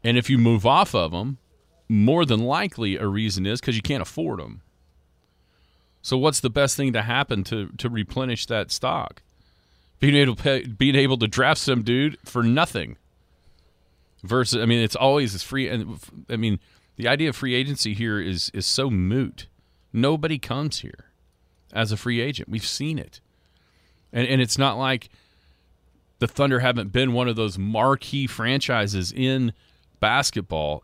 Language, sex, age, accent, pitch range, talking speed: English, male, 40-59, American, 95-130 Hz, 165 wpm